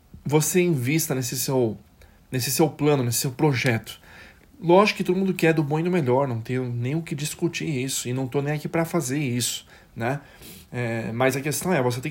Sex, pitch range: male, 125-165 Hz